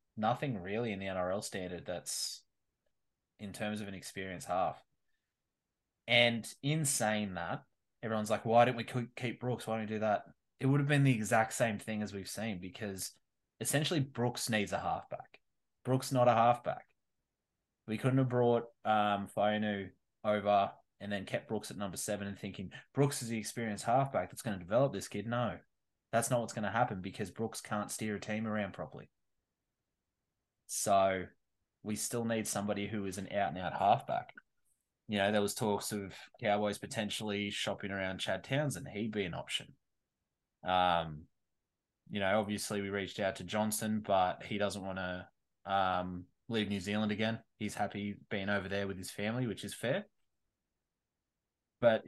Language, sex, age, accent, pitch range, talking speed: English, male, 20-39, Australian, 100-115 Hz, 175 wpm